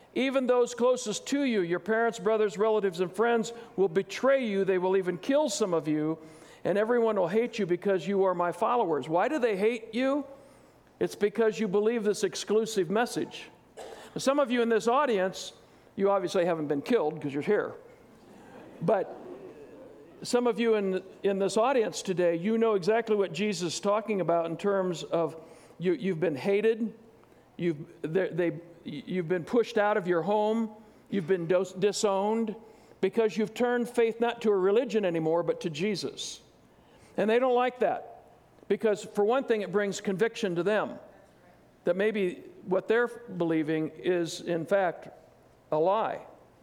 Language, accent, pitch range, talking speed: English, American, 185-230 Hz, 165 wpm